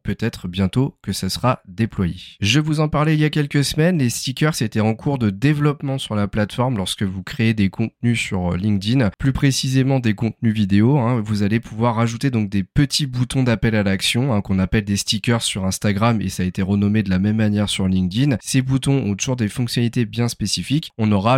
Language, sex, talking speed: French, male, 215 wpm